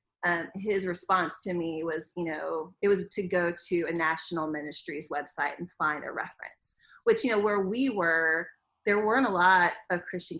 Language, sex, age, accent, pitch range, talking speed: English, female, 30-49, American, 175-210 Hz, 190 wpm